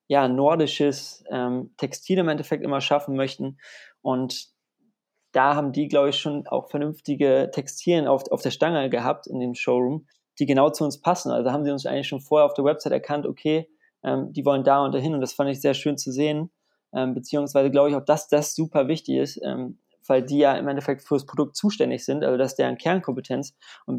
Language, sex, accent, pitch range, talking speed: German, male, German, 130-150 Hz, 215 wpm